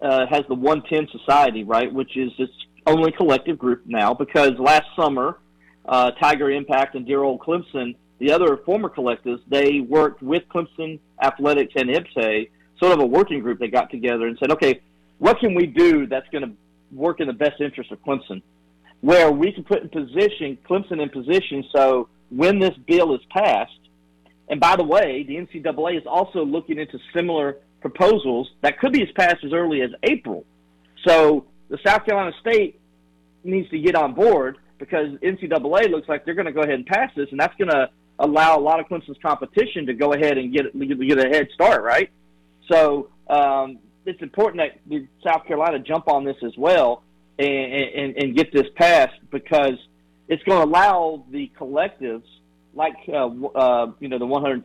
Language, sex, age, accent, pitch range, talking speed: English, male, 40-59, American, 120-160 Hz, 190 wpm